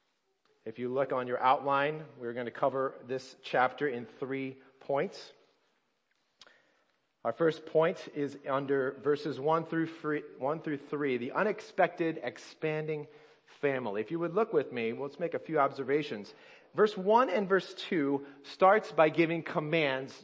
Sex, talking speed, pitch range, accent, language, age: male, 150 wpm, 140-185 Hz, American, English, 40-59